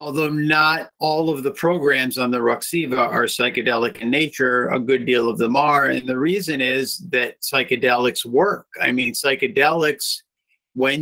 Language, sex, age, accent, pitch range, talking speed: English, male, 50-69, American, 125-155 Hz, 165 wpm